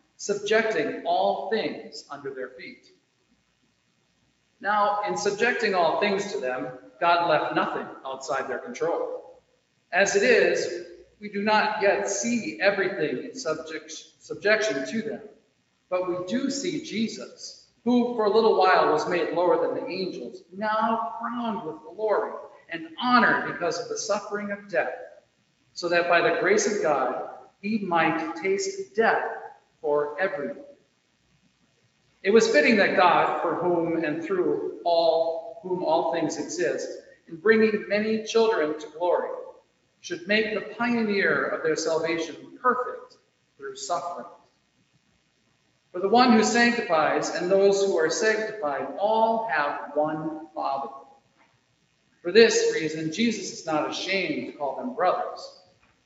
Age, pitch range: 50-69, 165-235 Hz